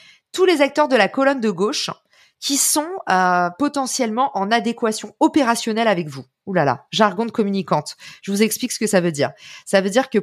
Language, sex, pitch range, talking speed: French, female, 185-235 Hz, 205 wpm